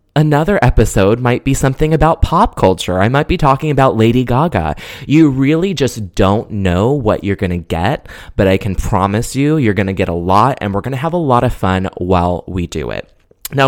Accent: American